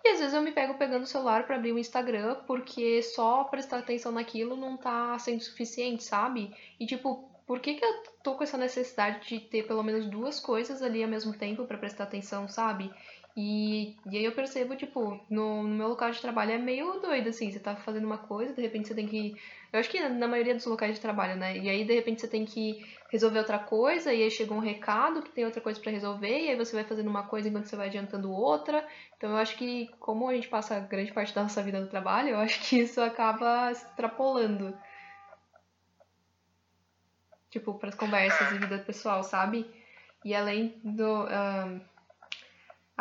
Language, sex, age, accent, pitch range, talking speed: Portuguese, female, 10-29, Brazilian, 215-250 Hz, 210 wpm